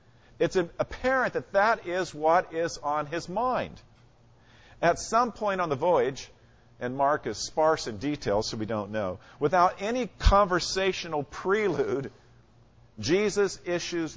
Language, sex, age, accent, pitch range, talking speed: English, male, 50-69, American, 115-160 Hz, 135 wpm